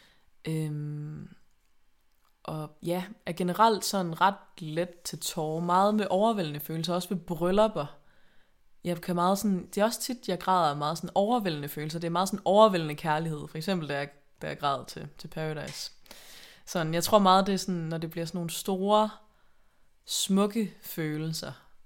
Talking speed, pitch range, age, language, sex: 165 wpm, 155-185 Hz, 20-39, Danish, female